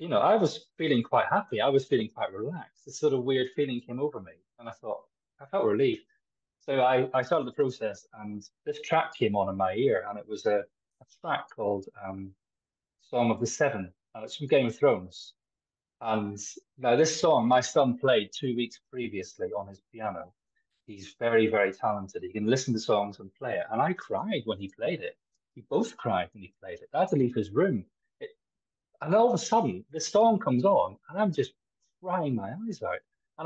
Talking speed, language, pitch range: 215 wpm, English, 100-160 Hz